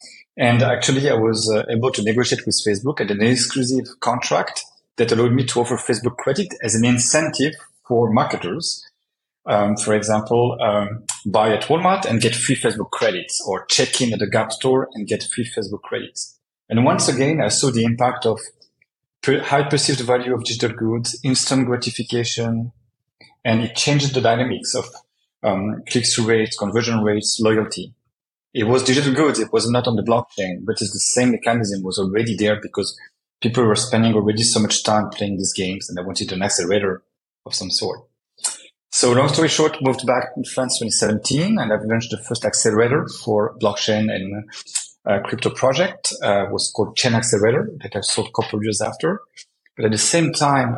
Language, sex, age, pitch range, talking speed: English, male, 40-59, 110-125 Hz, 185 wpm